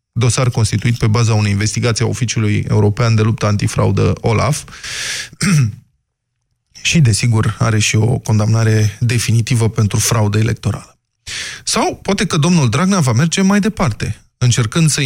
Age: 20-39